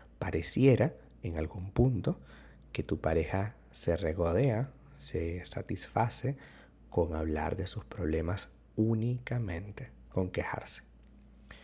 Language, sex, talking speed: Spanish, male, 100 wpm